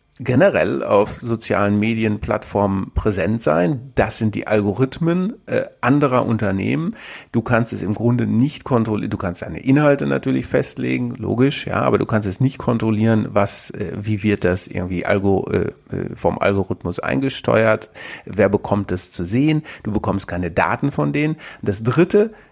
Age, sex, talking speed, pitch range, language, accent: 50-69, male, 155 wpm, 100-125 Hz, German, German